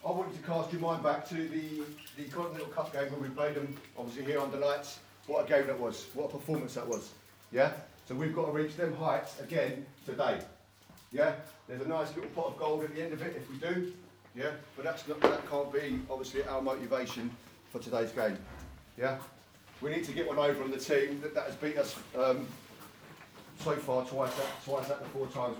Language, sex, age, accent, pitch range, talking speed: English, male, 30-49, British, 125-155 Hz, 230 wpm